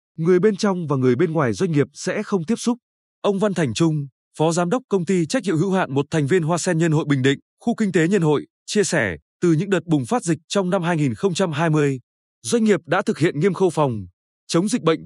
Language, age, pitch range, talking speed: Vietnamese, 20-39, 145-200 Hz, 245 wpm